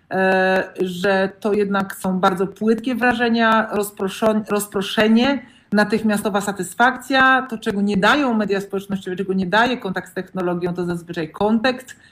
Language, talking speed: Polish, 125 wpm